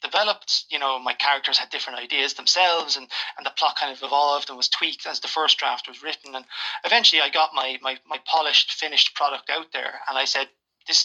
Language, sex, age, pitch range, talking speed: English, male, 20-39, 140-165 Hz, 225 wpm